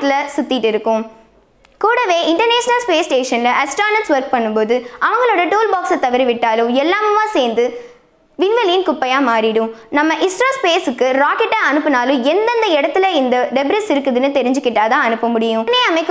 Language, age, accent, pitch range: Tamil, 20-39, native, 250-370 Hz